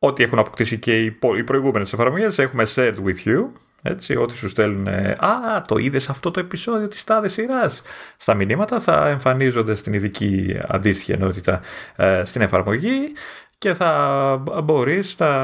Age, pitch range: 30-49, 100-135 Hz